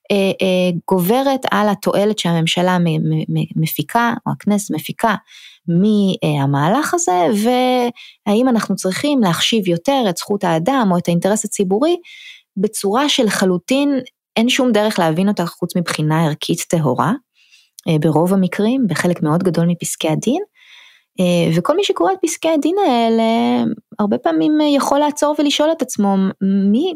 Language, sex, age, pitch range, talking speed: Hebrew, female, 20-39, 160-230 Hz, 120 wpm